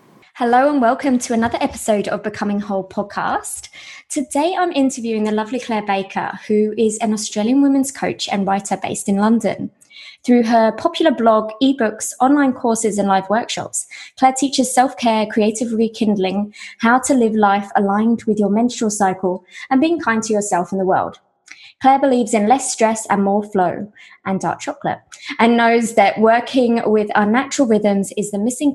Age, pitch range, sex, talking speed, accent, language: 20-39, 205-260 Hz, female, 170 wpm, British, English